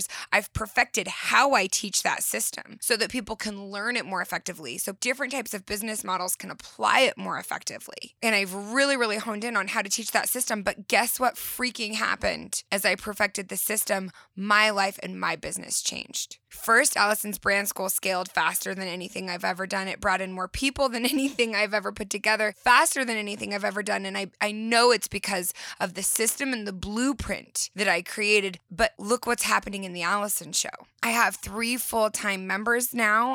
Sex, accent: female, American